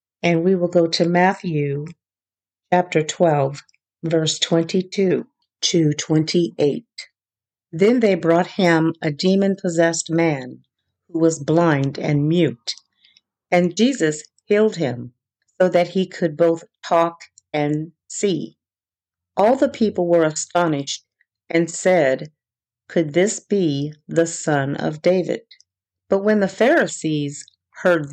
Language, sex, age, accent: English, female, 50-69, American